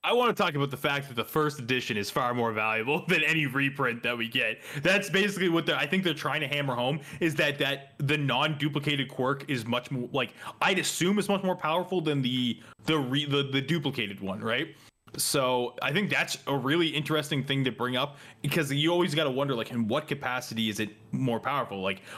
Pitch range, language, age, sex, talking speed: 120-150 Hz, English, 20-39, male, 220 wpm